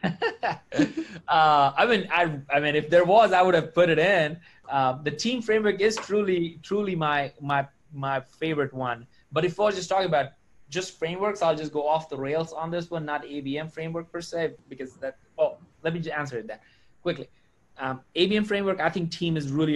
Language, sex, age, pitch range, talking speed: English, male, 20-39, 135-170 Hz, 205 wpm